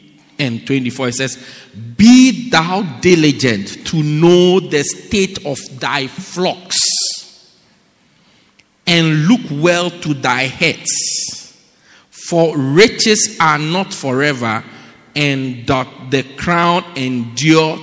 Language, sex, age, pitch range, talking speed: English, male, 50-69, 150-210 Hz, 105 wpm